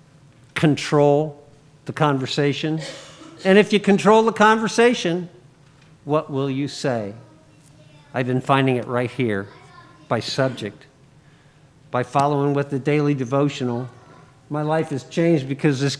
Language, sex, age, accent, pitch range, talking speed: English, male, 50-69, American, 135-155 Hz, 130 wpm